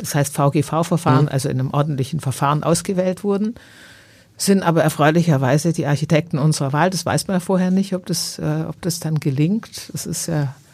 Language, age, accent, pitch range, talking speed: German, 50-69, German, 150-175 Hz, 185 wpm